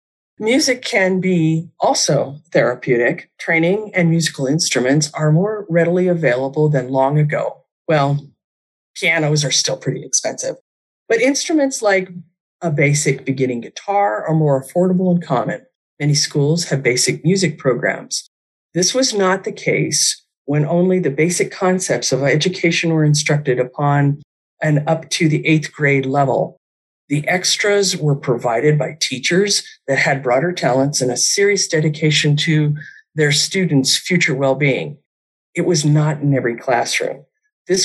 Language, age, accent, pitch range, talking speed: English, 40-59, American, 140-180 Hz, 140 wpm